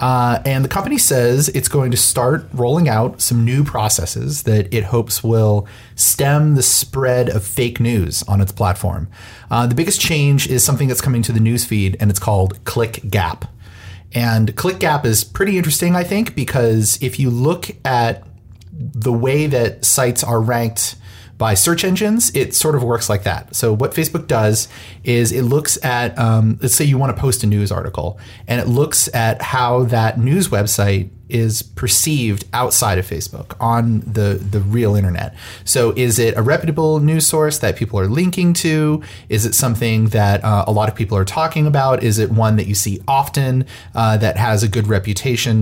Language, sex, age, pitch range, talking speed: English, male, 30-49, 105-135 Hz, 190 wpm